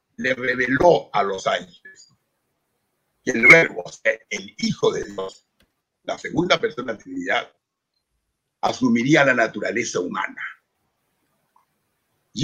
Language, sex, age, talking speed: Spanish, male, 60-79, 120 wpm